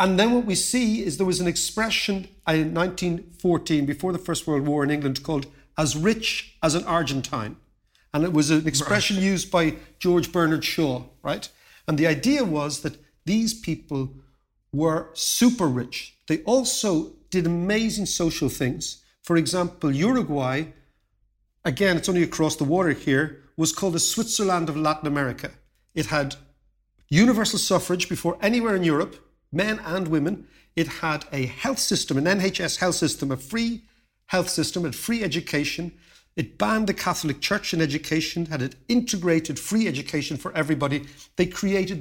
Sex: male